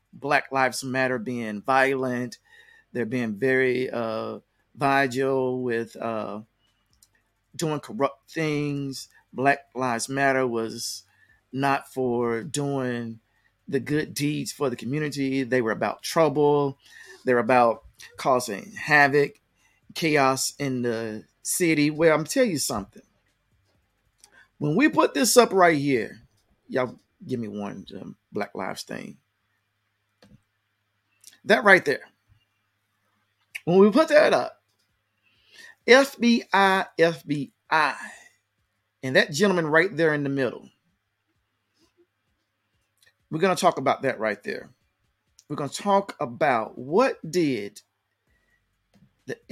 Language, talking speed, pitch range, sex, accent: English, 115 wpm, 110-160 Hz, male, American